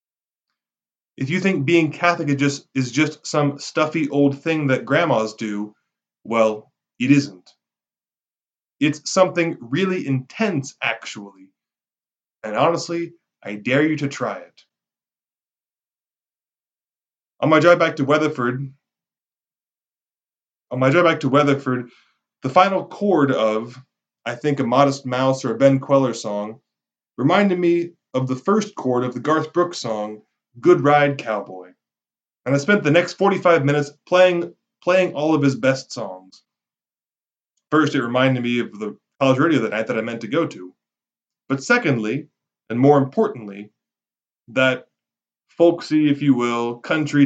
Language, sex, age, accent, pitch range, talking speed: English, male, 20-39, American, 125-165 Hz, 140 wpm